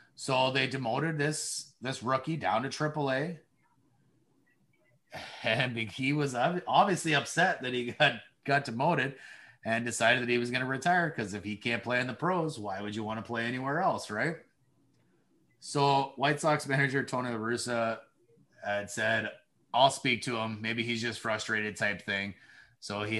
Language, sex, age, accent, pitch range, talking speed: English, male, 30-49, American, 115-155 Hz, 170 wpm